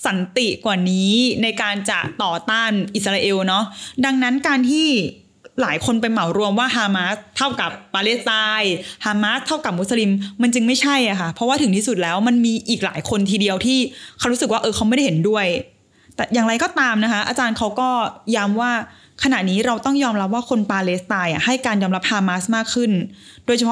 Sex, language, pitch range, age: female, Thai, 200-255 Hz, 20-39